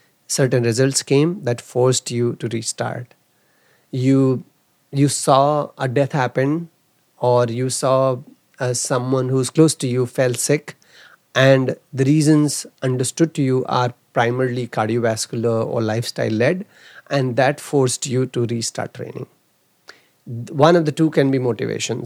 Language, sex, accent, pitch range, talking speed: English, male, Indian, 120-145 Hz, 135 wpm